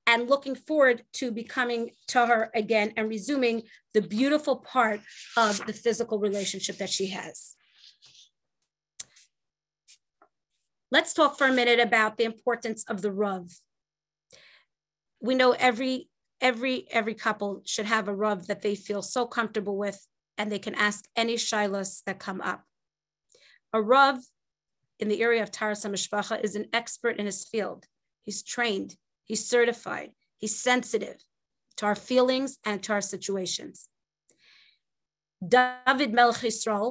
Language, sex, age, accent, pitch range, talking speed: English, female, 30-49, American, 210-245 Hz, 140 wpm